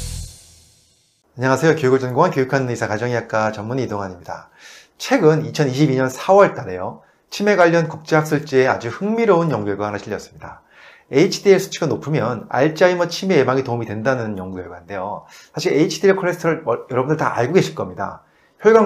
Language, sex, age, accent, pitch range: Korean, male, 30-49, native, 115-175 Hz